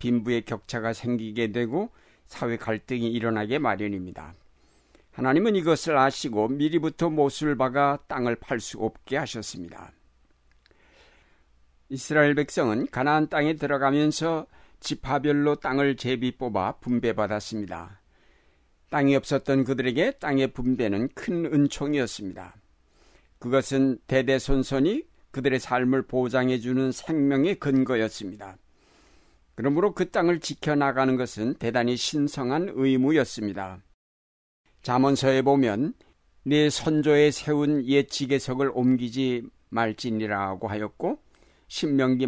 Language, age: Korean, 60-79